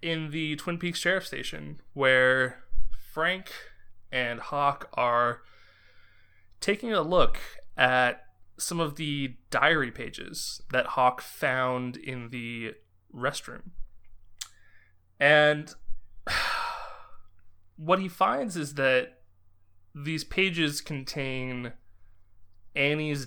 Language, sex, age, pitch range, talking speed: English, male, 20-39, 95-140 Hz, 95 wpm